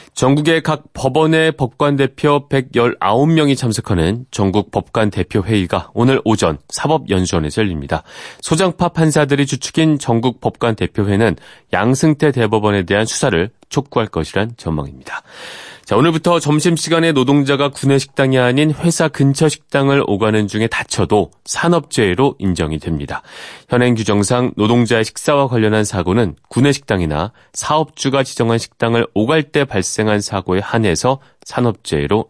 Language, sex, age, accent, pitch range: Korean, male, 30-49, native, 95-140 Hz